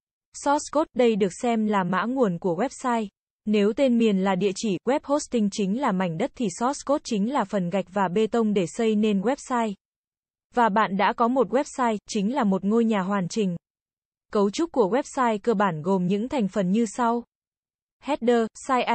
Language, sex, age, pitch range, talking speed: Vietnamese, female, 20-39, 205-250 Hz, 200 wpm